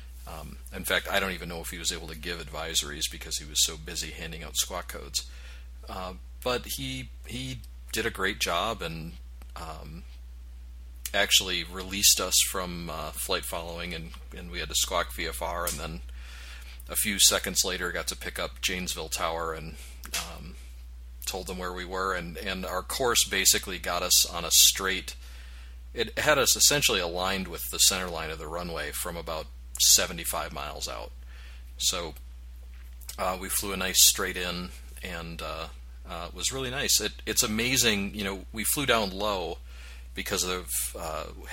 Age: 40-59